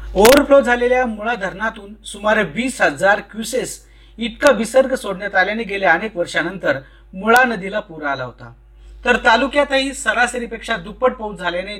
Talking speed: 125 wpm